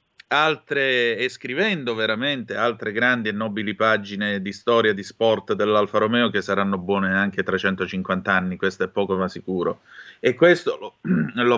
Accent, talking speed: native, 155 wpm